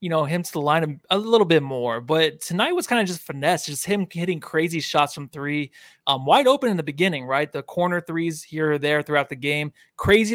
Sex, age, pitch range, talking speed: male, 20-39, 145-180 Hz, 240 wpm